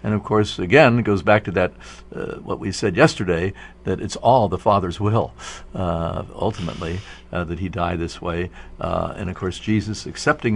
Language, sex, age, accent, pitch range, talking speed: English, male, 60-79, American, 85-110 Hz, 195 wpm